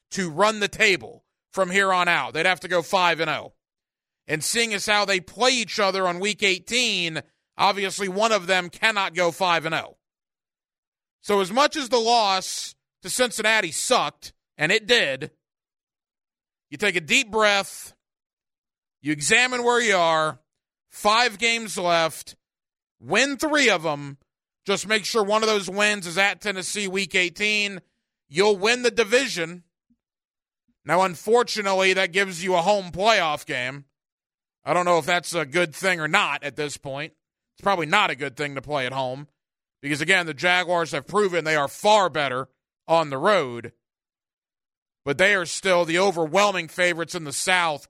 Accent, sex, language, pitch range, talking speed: American, male, English, 155-210 Hz, 165 wpm